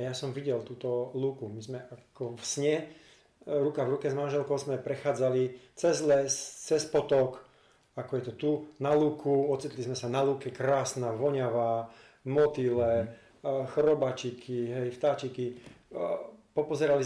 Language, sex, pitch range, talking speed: Slovak, male, 125-145 Hz, 135 wpm